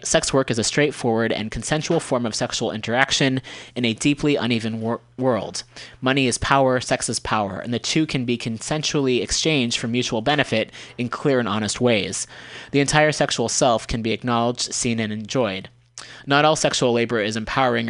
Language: English